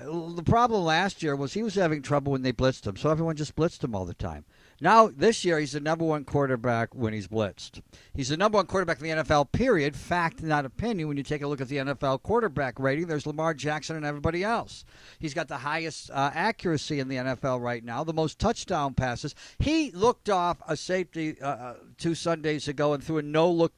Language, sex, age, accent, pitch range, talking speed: English, male, 50-69, American, 145-195 Hz, 220 wpm